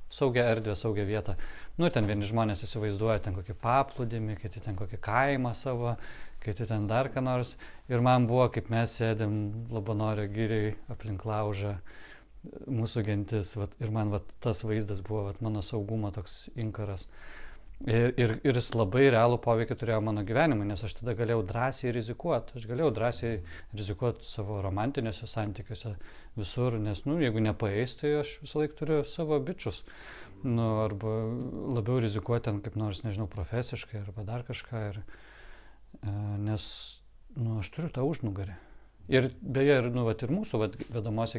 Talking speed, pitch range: 155 wpm, 110-130 Hz